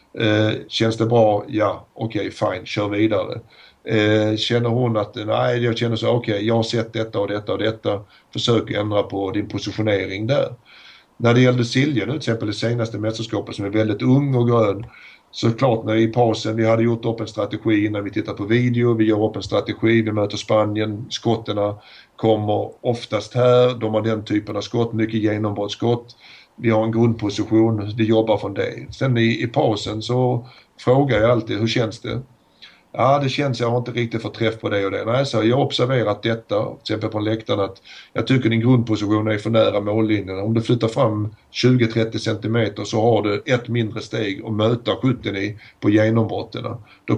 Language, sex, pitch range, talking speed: Swedish, male, 105-120 Hz, 200 wpm